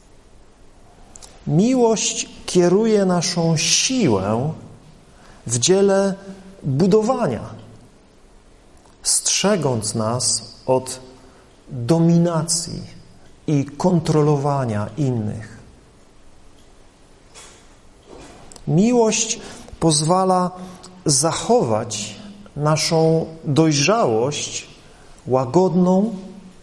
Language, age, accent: Polish, 40-59, native